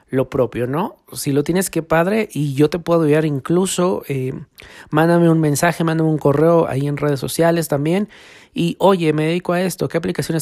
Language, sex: Spanish, male